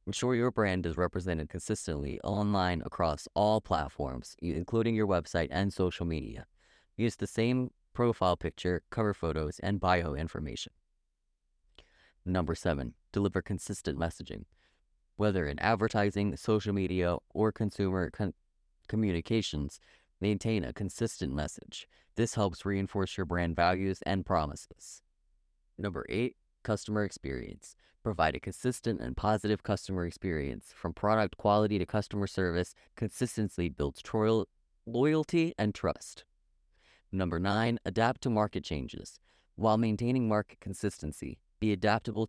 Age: 30-49